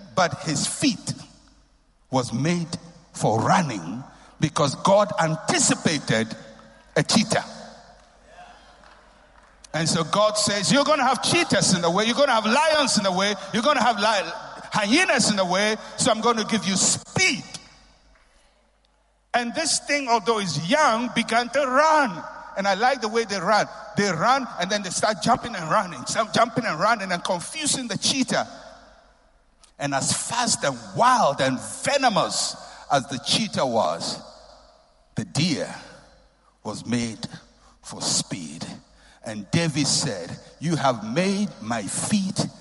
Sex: male